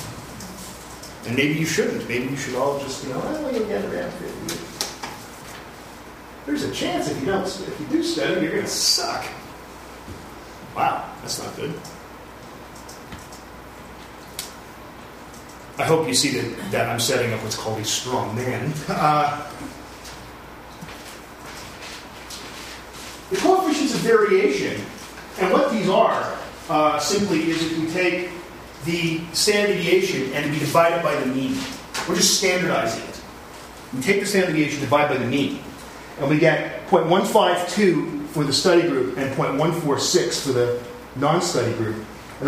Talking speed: 140 wpm